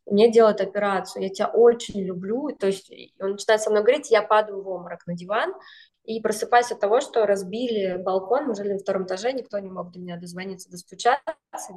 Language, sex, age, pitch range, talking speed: Russian, female, 20-39, 200-250 Hz, 200 wpm